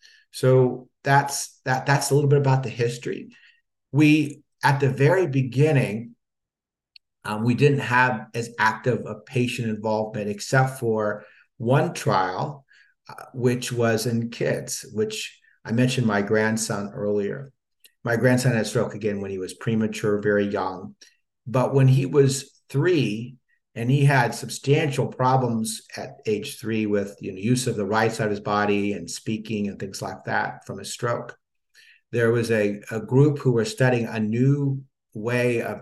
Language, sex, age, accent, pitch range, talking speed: English, male, 50-69, American, 110-130 Hz, 160 wpm